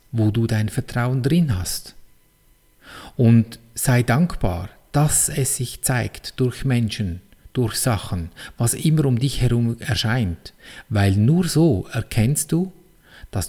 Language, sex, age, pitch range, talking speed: German, male, 50-69, 105-140 Hz, 130 wpm